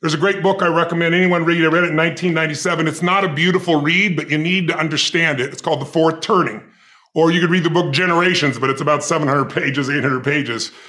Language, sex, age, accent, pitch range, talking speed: English, female, 40-59, American, 165-215 Hz, 235 wpm